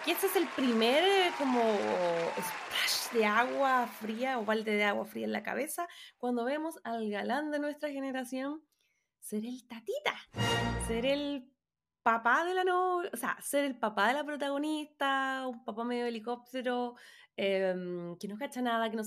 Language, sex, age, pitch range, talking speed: Spanish, female, 20-39, 200-275 Hz, 170 wpm